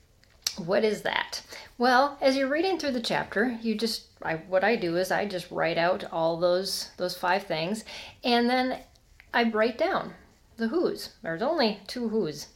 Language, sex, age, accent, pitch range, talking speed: English, female, 30-49, American, 175-240 Hz, 175 wpm